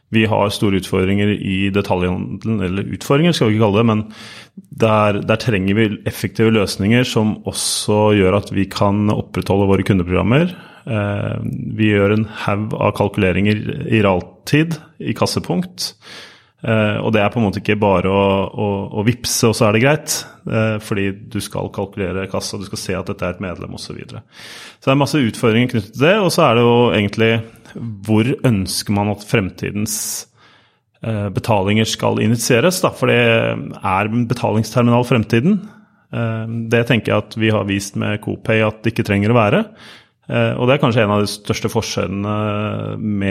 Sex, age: male, 30-49